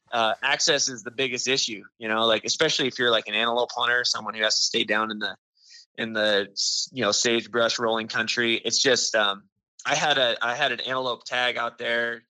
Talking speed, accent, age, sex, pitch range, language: 215 wpm, American, 20-39, male, 115-140 Hz, English